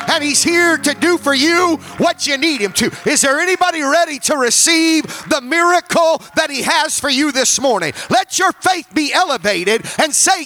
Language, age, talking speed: English, 40-59, 195 wpm